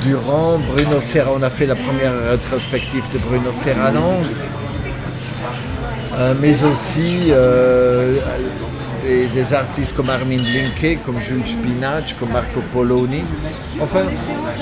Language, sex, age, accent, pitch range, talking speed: French, male, 50-69, French, 125-150 Hz, 125 wpm